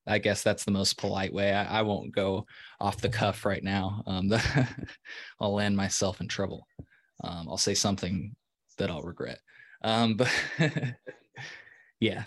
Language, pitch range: English, 100-115 Hz